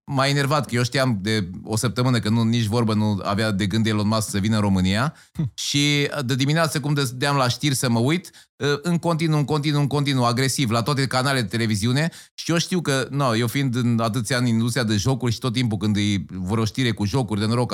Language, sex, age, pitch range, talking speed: Romanian, male, 30-49, 115-150 Hz, 235 wpm